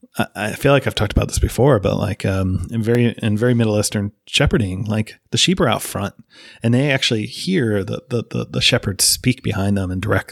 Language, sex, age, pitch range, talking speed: English, male, 30-49, 100-125 Hz, 220 wpm